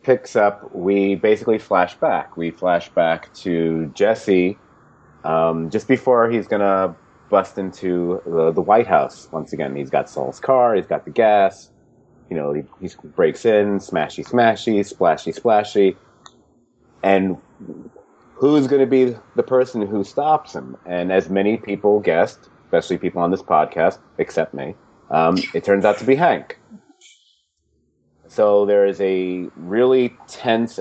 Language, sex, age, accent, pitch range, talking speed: English, male, 30-49, American, 95-120 Hz, 150 wpm